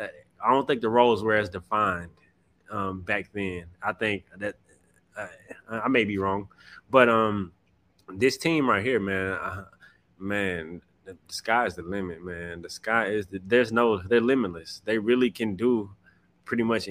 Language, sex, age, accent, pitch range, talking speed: English, male, 20-39, American, 100-125 Hz, 170 wpm